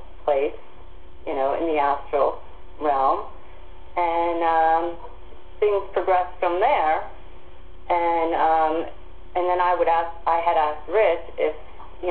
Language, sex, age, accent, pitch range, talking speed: English, female, 40-59, American, 145-180 Hz, 130 wpm